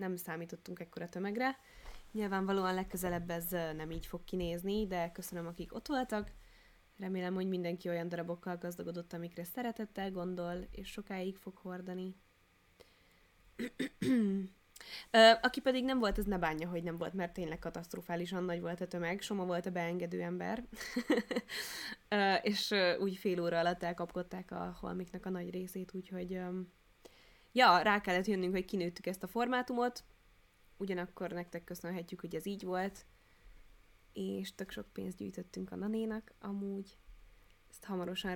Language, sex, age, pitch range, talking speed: Hungarian, female, 20-39, 170-200 Hz, 140 wpm